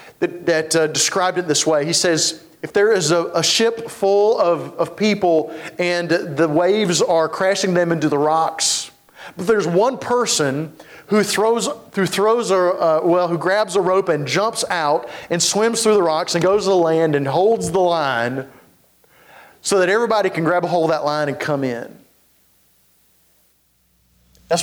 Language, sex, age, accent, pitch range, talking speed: English, male, 40-59, American, 155-200 Hz, 180 wpm